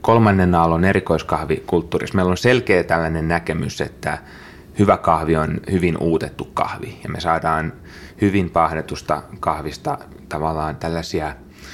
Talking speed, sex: 120 wpm, male